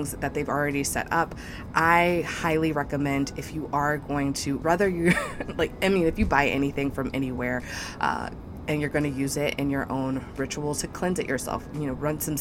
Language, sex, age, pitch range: English, female, 20-39, 135-170 Hz